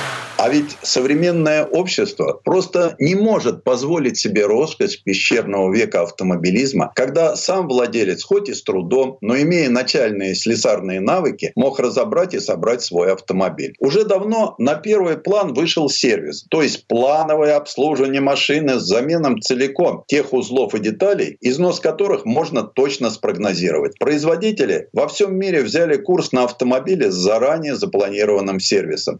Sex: male